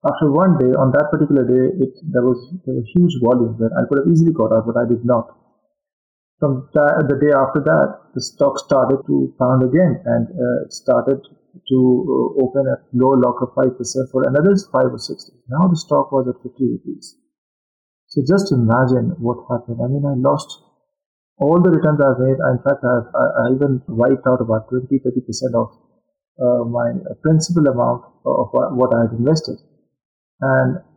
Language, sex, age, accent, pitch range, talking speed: English, male, 50-69, Indian, 125-155 Hz, 185 wpm